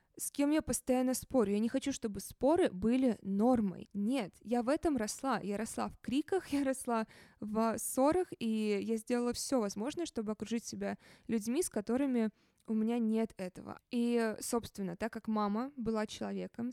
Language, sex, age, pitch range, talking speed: Russian, female, 20-39, 205-240 Hz, 170 wpm